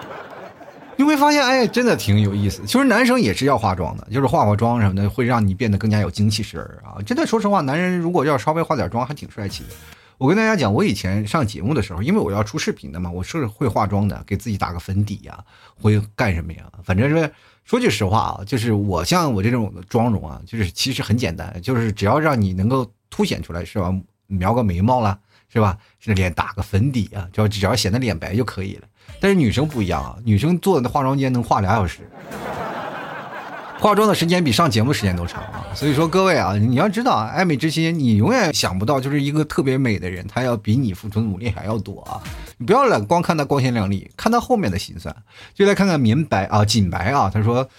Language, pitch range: Chinese, 100-145 Hz